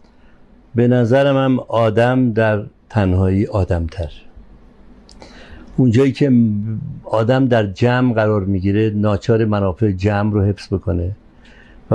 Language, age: Persian, 60-79